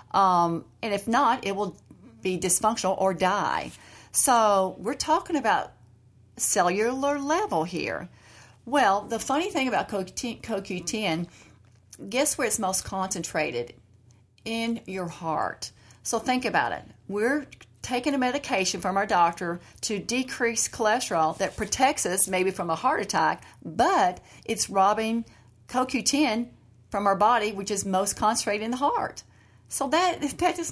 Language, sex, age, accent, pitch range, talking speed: English, female, 40-59, American, 180-245 Hz, 140 wpm